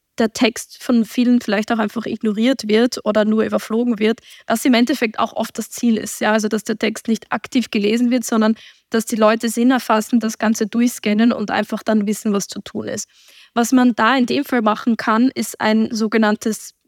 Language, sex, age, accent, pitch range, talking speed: German, female, 10-29, German, 220-245 Hz, 205 wpm